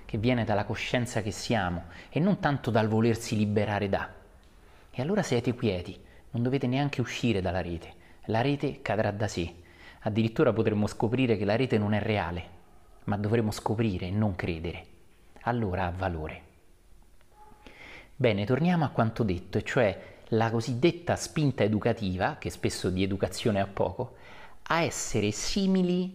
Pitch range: 95-120 Hz